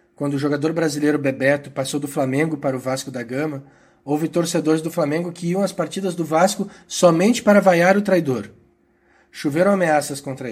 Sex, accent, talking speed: male, Brazilian, 175 wpm